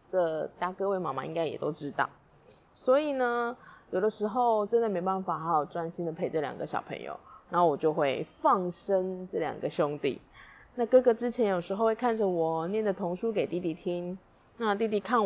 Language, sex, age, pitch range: Chinese, female, 20-39, 175-225 Hz